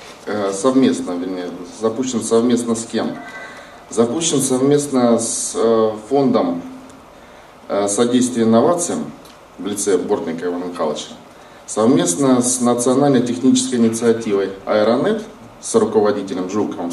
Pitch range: 95-130 Hz